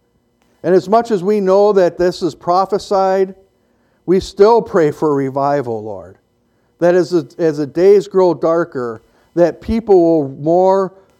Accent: American